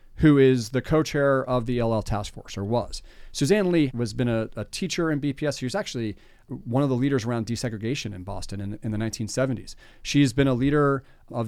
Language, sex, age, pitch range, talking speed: English, male, 40-59, 120-150 Hz, 210 wpm